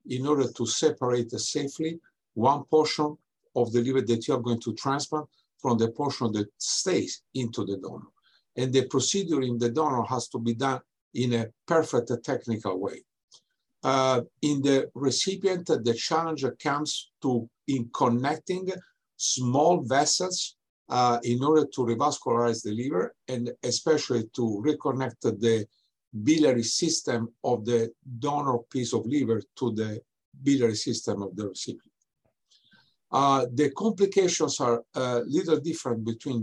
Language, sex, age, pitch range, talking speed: English, male, 50-69, 120-150 Hz, 140 wpm